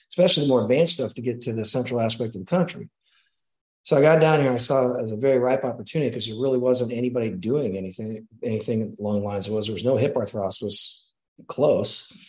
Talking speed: 235 wpm